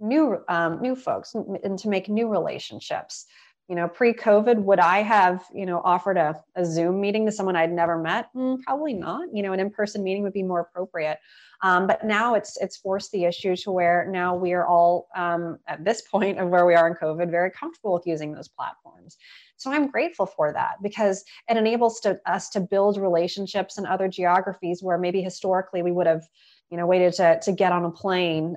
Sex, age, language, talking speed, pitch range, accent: female, 30-49, English, 210 wpm, 175-205 Hz, American